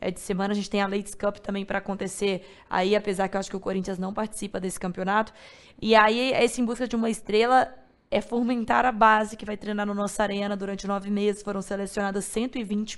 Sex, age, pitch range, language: female, 20-39, 205-265 Hz, Portuguese